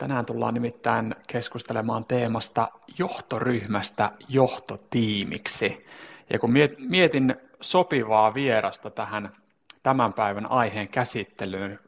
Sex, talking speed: male, 85 wpm